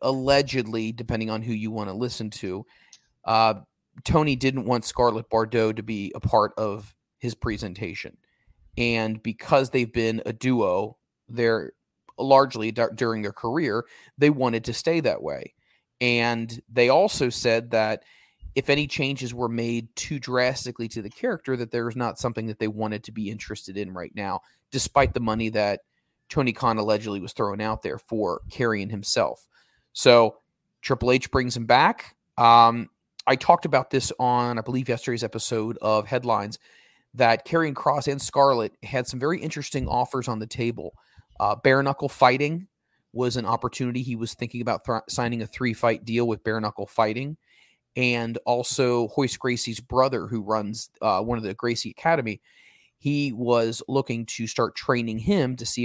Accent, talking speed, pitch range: American, 165 wpm, 110-125 Hz